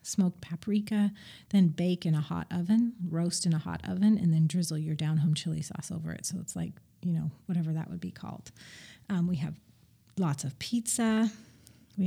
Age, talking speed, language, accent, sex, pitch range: 40-59, 195 wpm, English, American, female, 160-200 Hz